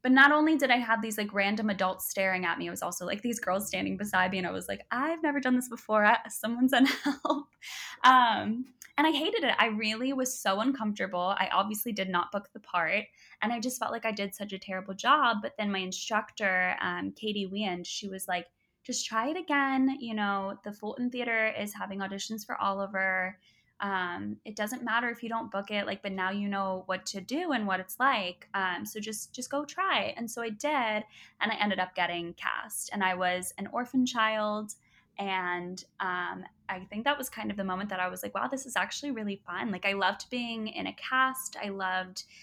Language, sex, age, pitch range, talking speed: English, female, 10-29, 190-245 Hz, 225 wpm